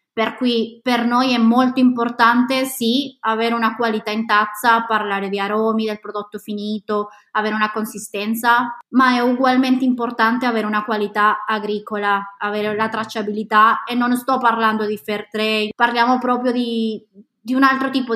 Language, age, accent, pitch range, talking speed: Italian, 20-39, native, 210-235 Hz, 155 wpm